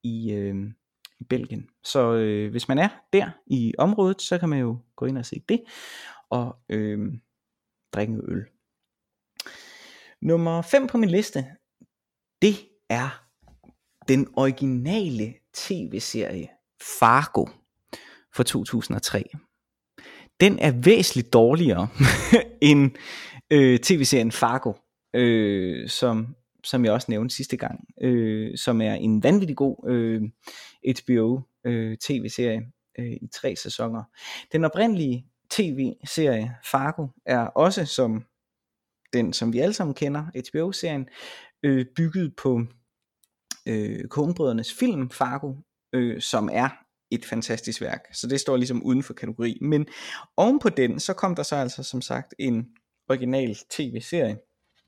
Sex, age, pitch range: male, 20-39, 115-155 Hz